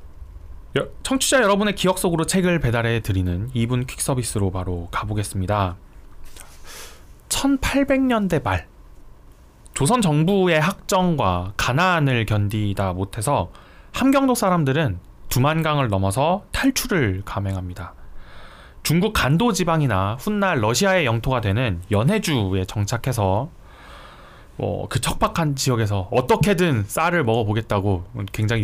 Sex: male